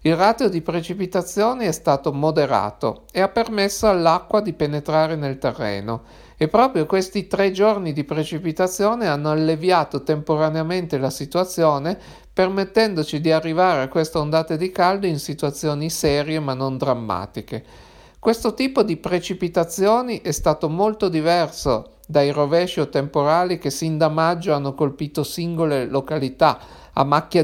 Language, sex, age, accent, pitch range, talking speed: Italian, male, 50-69, native, 145-185 Hz, 140 wpm